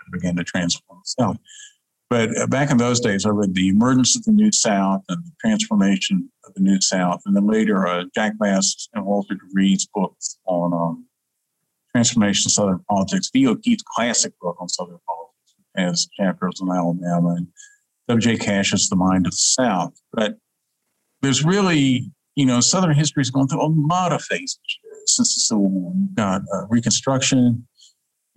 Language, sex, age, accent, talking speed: English, male, 50-69, American, 175 wpm